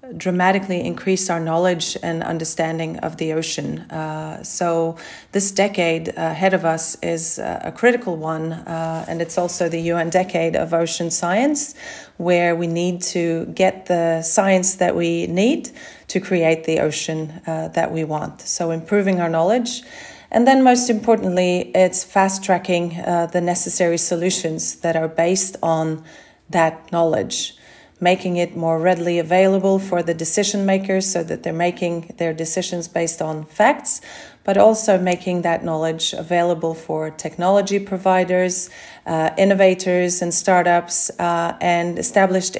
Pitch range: 165-185 Hz